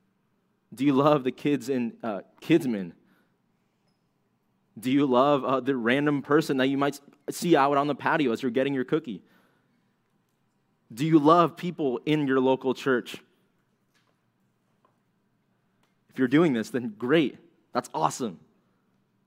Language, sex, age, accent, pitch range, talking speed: English, male, 20-39, American, 125-145 Hz, 135 wpm